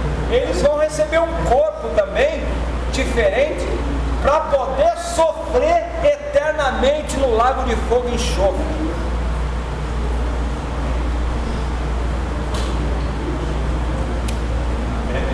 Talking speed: 65 wpm